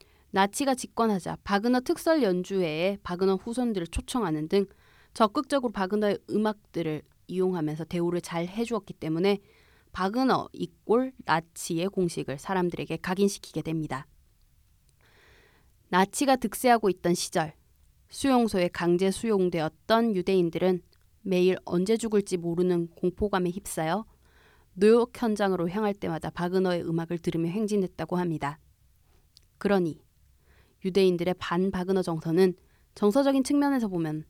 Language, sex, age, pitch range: Korean, female, 20-39, 165-215 Hz